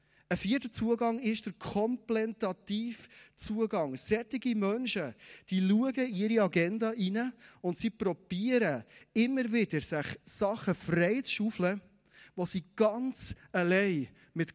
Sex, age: male, 30-49